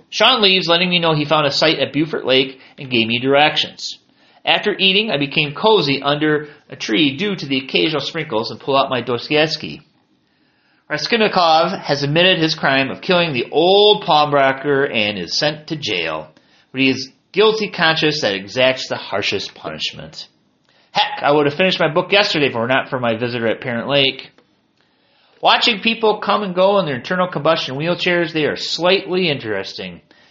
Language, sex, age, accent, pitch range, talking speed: English, male, 30-49, American, 130-180 Hz, 180 wpm